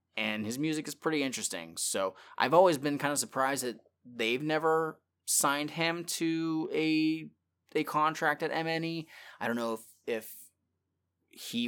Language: English